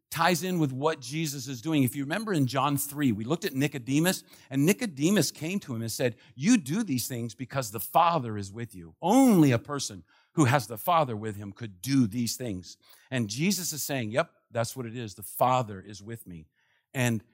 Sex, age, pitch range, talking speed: male, 50-69, 115-150 Hz, 215 wpm